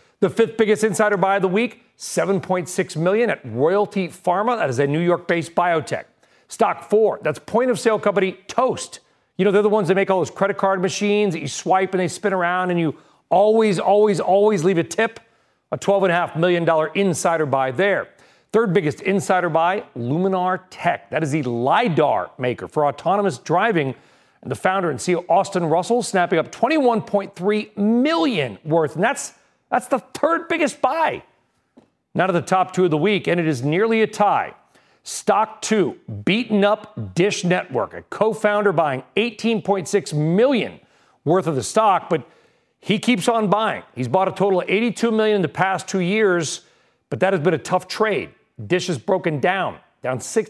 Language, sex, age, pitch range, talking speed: English, male, 40-59, 165-210 Hz, 175 wpm